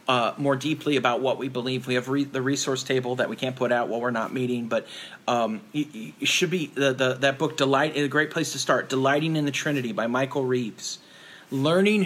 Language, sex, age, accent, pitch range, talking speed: English, male, 40-59, American, 125-165 Hz, 220 wpm